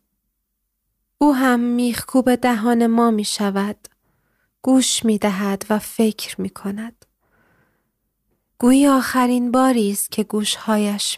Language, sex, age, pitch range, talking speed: Persian, female, 30-49, 215-255 Hz, 100 wpm